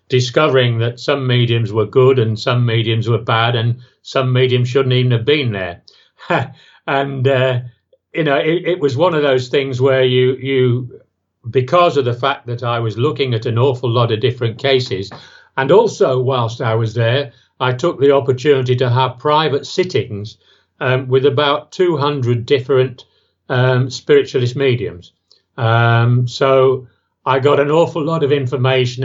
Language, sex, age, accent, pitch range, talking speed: English, male, 50-69, British, 120-135 Hz, 165 wpm